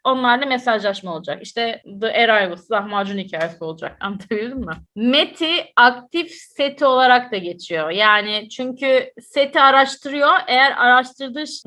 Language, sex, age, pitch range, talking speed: Turkish, female, 30-49, 235-285 Hz, 120 wpm